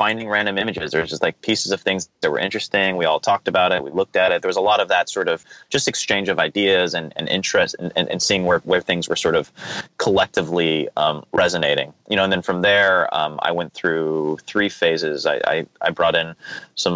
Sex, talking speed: male, 235 wpm